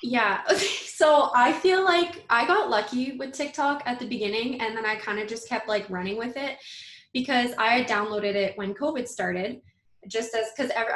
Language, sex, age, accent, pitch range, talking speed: English, female, 10-29, American, 210-270 Hz, 185 wpm